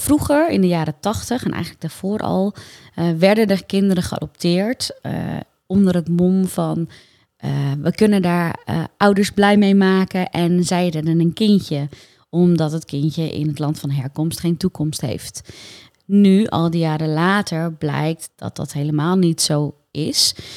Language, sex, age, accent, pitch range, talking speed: Dutch, female, 20-39, Dutch, 155-190 Hz, 165 wpm